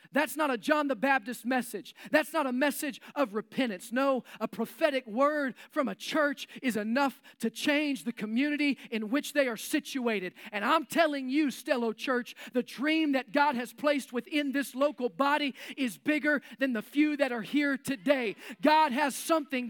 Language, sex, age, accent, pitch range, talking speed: English, male, 40-59, American, 255-300 Hz, 180 wpm